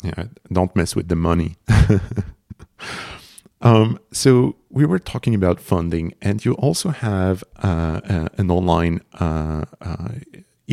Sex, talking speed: male, 115 wpm